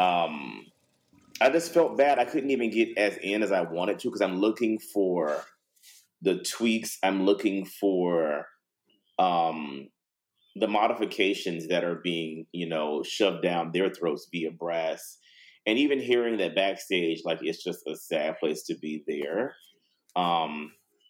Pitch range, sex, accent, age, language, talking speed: 85-110 Hz, male, American, 30-49, English, 150 wpm